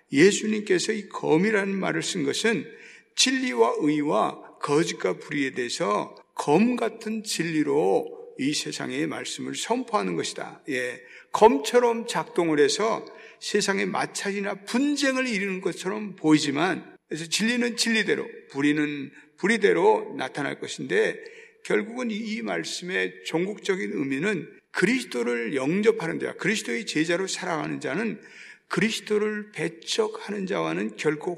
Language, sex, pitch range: Korean, male, 170-260 Hz